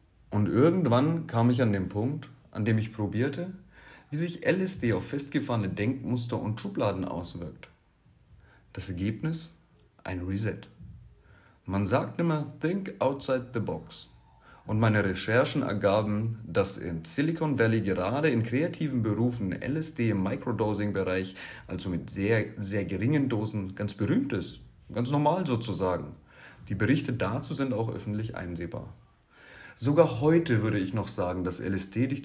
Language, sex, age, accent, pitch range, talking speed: German, male, 30-49, German, 100-135 Hz, 140 wpm